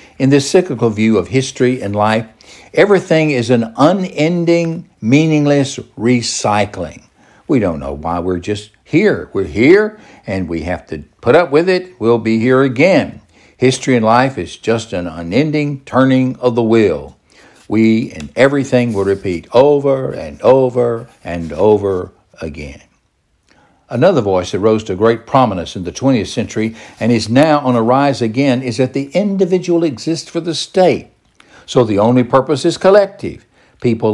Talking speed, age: 160 wpm, 60-79